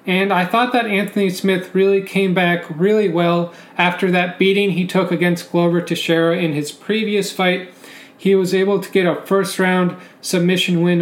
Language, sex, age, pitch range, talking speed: English, male, 30-49, 170-195 Hz, 175 wpm